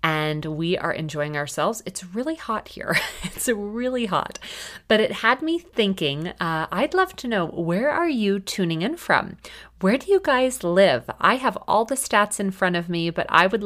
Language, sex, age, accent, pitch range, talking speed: English, female, 30-49, American, 155-200 Hz, 200 wpm